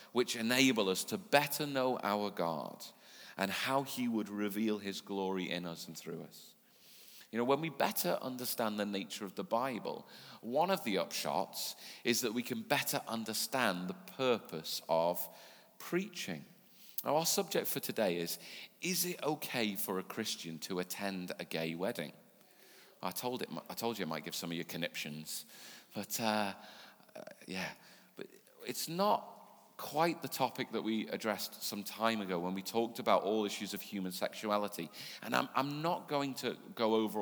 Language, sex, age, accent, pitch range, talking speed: English, male, 40-59, British, 95-130 Hz, 175 wpm